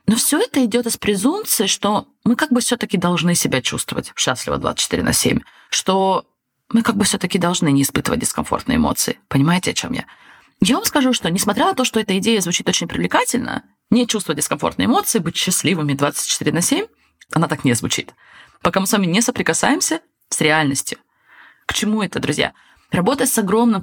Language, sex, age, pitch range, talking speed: Russian, female, 20-39, 175-235 Hz, 185 wpm